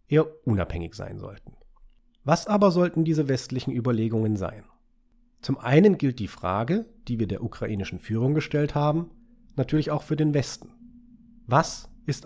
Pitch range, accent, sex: 110-160 Hz, German, male